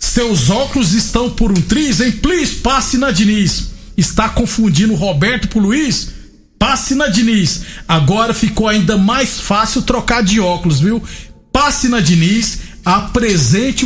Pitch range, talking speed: 175-225 Hz, 140 wpm